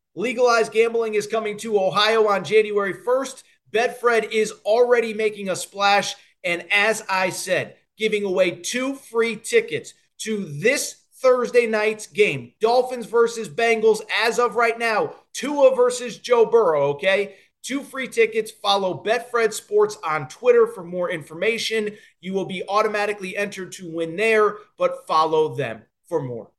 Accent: American